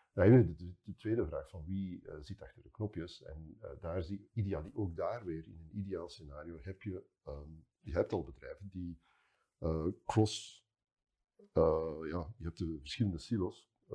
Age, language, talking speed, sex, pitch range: 50-69, Dutch, 160 wpm, male, 80-100 Hz